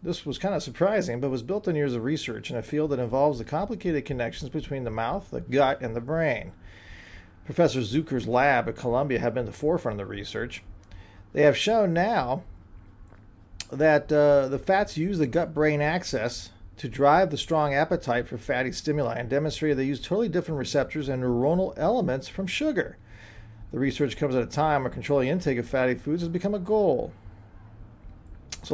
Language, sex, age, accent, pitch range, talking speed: English, male, 40-59, American, 125-165 Hz, 185 wpm